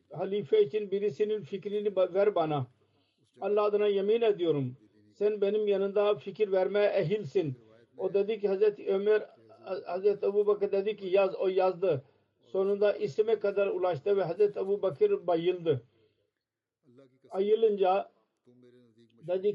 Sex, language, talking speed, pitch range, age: male, Turkish, 125 wpm, 135-210 Hz, 60-79